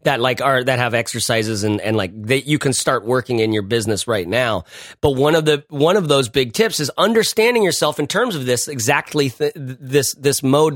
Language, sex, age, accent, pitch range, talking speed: English, male, 30-49, American, 125-165 Hz, 225 wpm